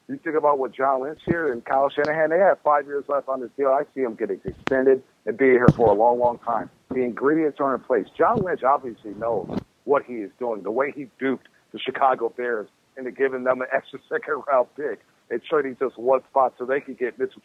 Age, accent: 50-69, American